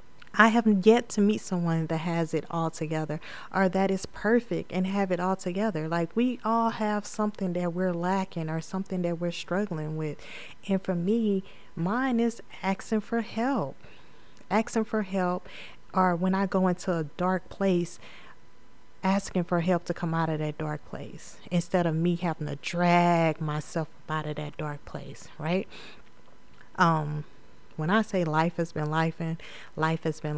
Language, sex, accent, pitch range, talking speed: English, female, American, 155-190 Hz, 175 wpm